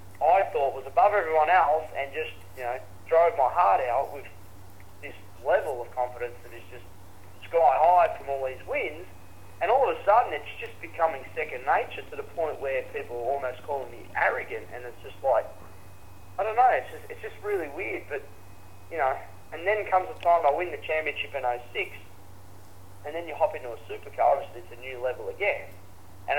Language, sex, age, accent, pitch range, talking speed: English, male, 30-49, Australian, 100-155 Hz, 200 wpm